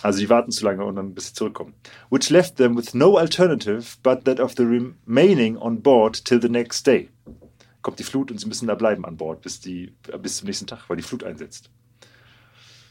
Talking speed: 215 wpm